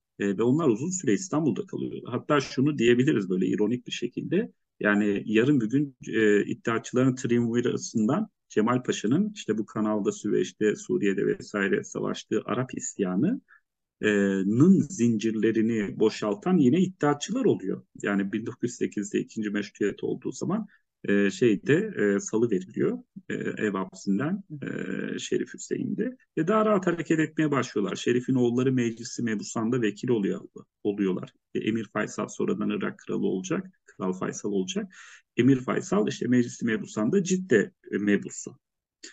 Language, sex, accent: English, male, Turkish